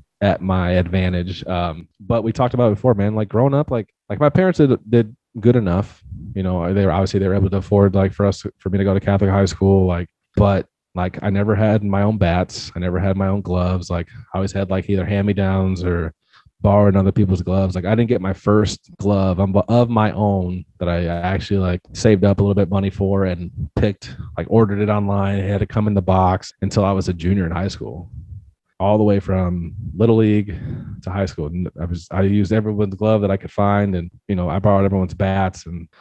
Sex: male